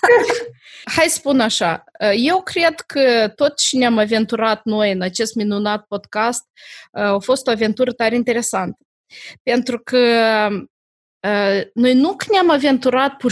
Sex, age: female, 20-39